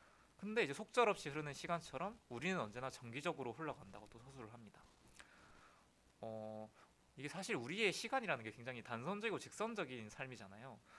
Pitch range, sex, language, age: 115-175 Hz, male, Korean, 20-39